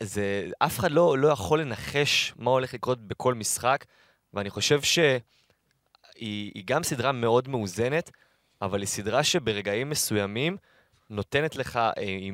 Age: 20-39